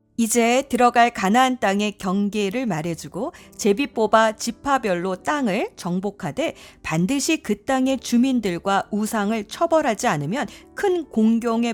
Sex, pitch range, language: female, 180-255 Hz, Korean